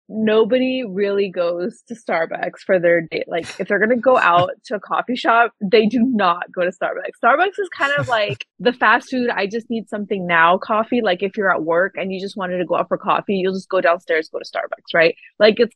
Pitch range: 180-235 Hz